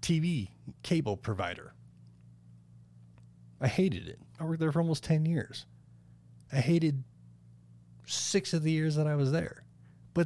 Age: 30-49